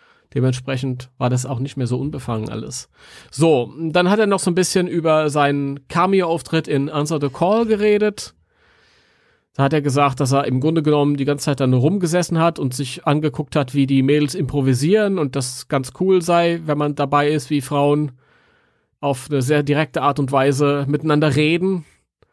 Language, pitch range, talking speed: German, 135-160 Hz, 185 wpm